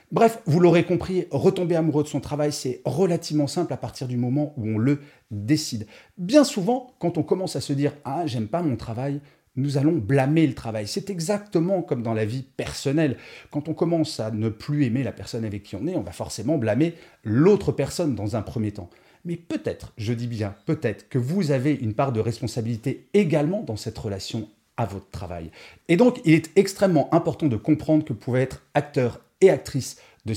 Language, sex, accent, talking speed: French, male, French, 205 wpm